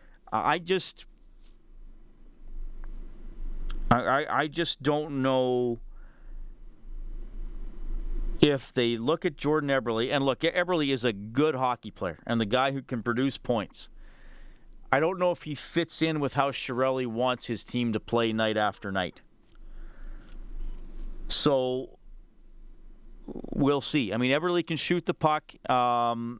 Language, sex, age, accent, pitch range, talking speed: English, male, 40-59, American, 115-135 Hz, 130 wpm